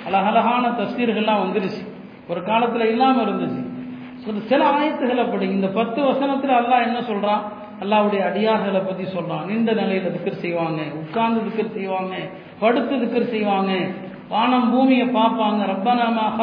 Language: Tamil